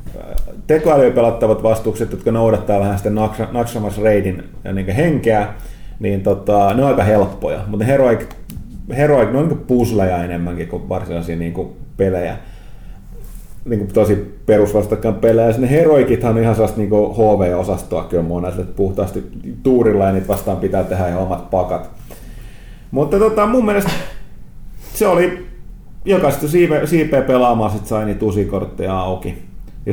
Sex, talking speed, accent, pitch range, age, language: male, 140 wpm, native, 95-120 Hz, 30-49, Finnish